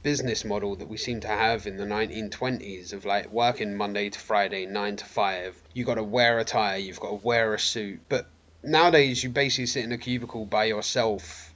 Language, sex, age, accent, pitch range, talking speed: English, male, 20-39, British, 105-135 Hz, 200 wpm